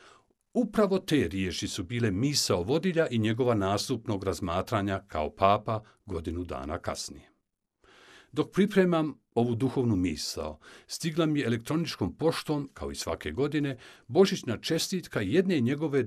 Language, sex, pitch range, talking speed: Croatian, male, 100-145 Hz, 125 wpm